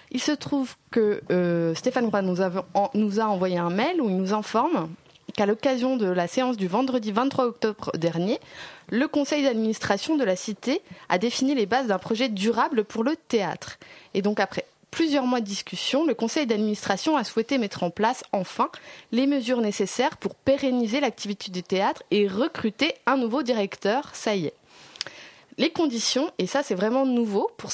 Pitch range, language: 200-265 Hz, French